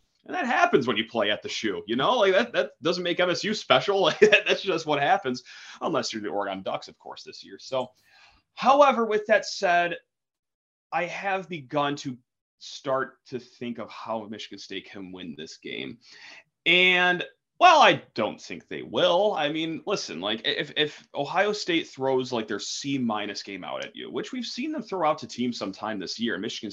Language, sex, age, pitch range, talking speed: English, male, 30-49, 110-185 Hz, 195 wpm